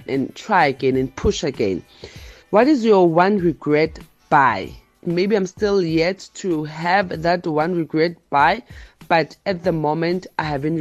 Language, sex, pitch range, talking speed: English, female, 145-195 Hz, 155 wpm